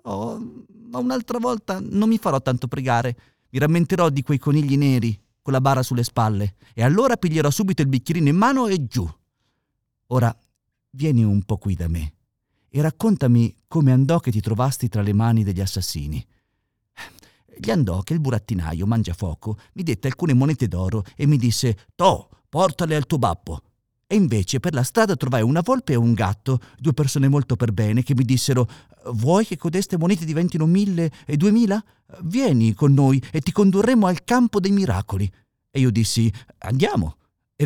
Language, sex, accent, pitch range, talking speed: Italian, male, native, 115-175 Hz, 175 wpm